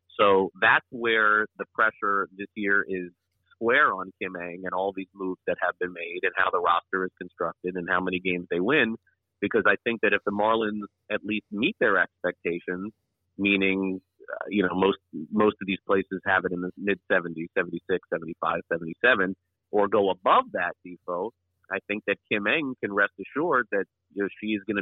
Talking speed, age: 195 wpm, 30-49